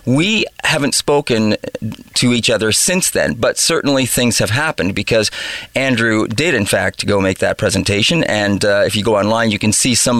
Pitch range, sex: 110-130 Hz, male